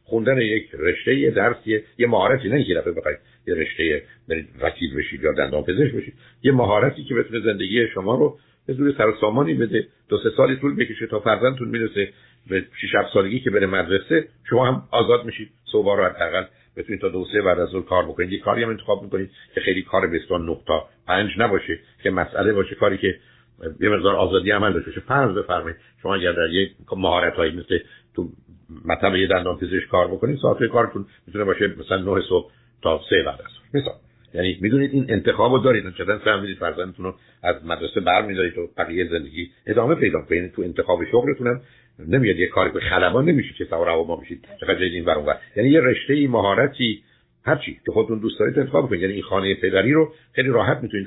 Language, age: Persian, 60-79